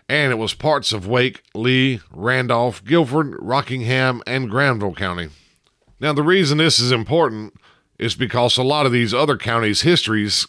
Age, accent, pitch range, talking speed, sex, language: 50-69, American, 100-135 Hz, 160 wpm, male, English